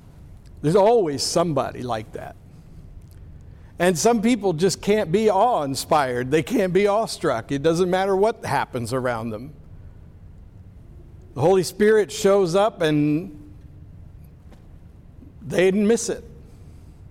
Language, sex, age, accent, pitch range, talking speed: English, male, 60-79, American, 130-210 Hz, 115 wpm